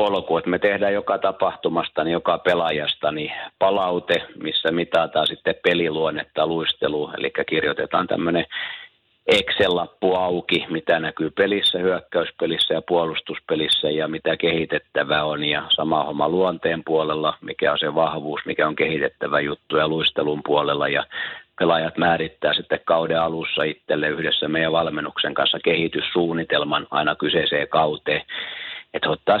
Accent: native